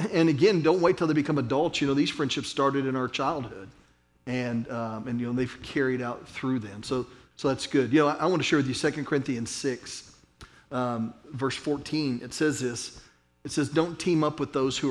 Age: 40-59